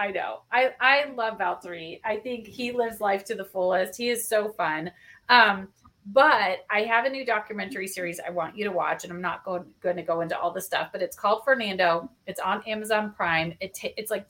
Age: 30-49